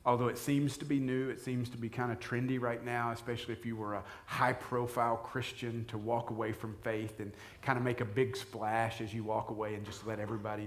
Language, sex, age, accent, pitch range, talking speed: English, male, 40-59, American, 115-140 Hz, 235 wpm